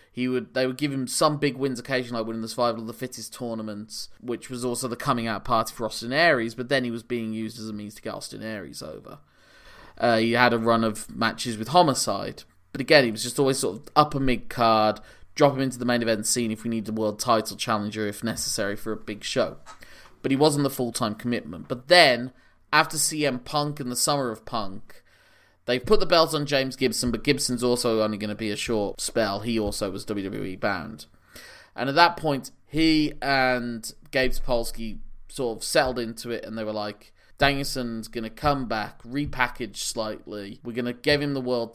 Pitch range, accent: 110-140 Hz, British